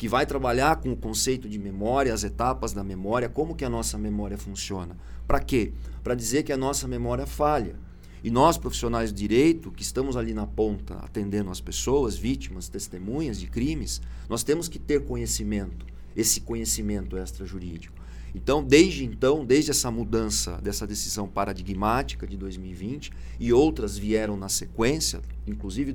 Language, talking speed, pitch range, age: Portuguese, 160 wpm, 95-130 Hz, 40-59